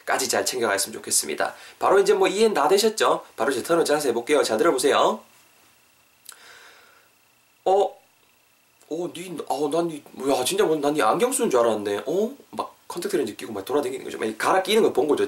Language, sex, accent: Korean, male, native